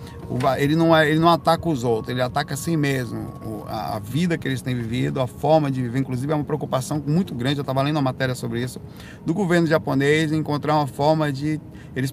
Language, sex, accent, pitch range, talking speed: Portuguese, male, Brazilian, 130-155 Hz, 220 wpm